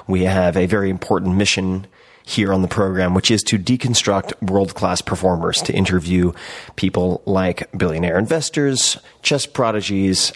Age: 30-49